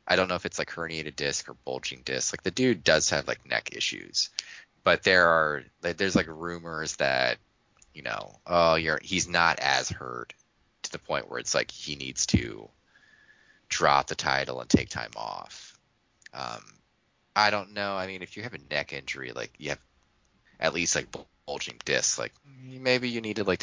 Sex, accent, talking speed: male, American, 190 wpm